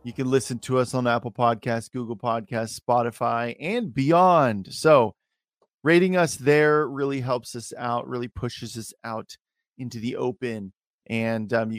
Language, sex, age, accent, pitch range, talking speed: English, male, 30-49, American, 115-145 Hz, 160 wpm